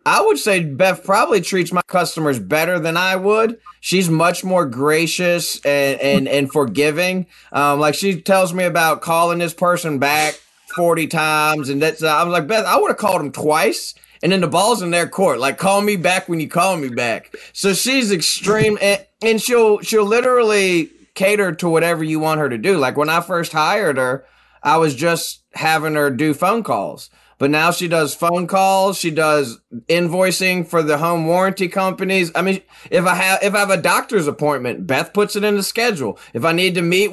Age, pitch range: 20-39, 155-195 Hz